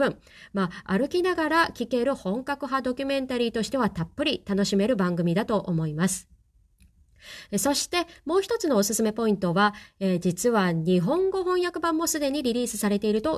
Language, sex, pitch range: Japanese, female, 190-260 Hz